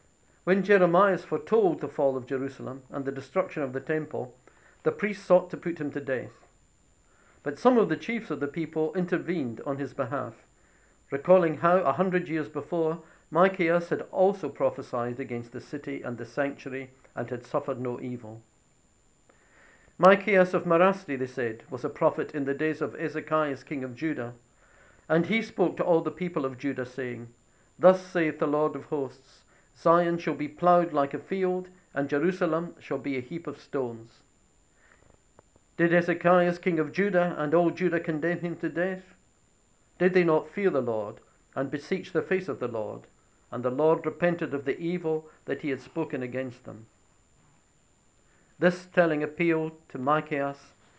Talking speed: 170 wpm